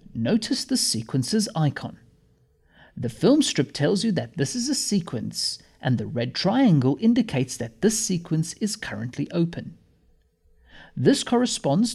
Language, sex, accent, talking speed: English, male, British, 135 wpm